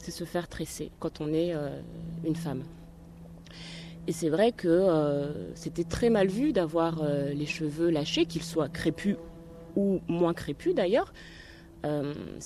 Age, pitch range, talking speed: 30-49, 155-195 Hz, 155 wpm